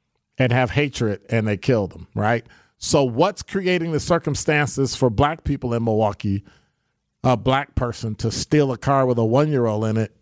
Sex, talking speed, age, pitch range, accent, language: male, 175 wpm, 50-69, 115-150 Hz, American, English